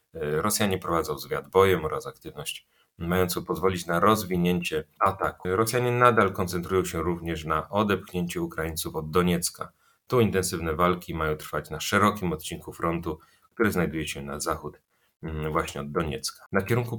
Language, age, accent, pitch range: Polish, 30-49, native, 75-90 Hz